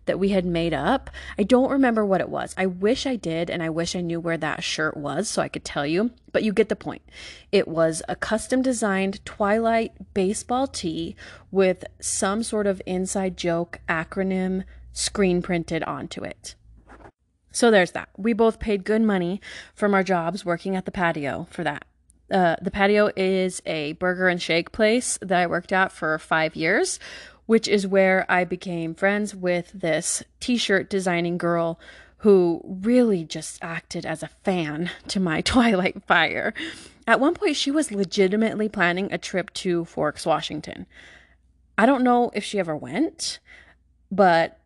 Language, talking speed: English, 170 wpm